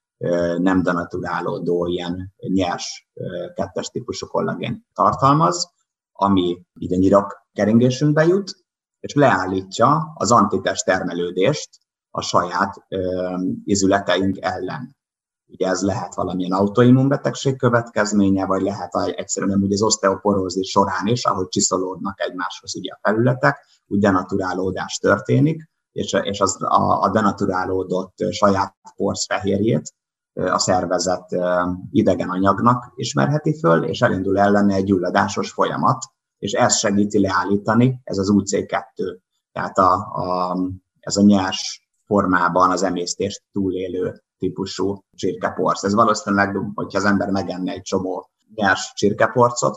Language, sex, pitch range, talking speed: Hungarian, male, 90-105 Hz, 110 wpm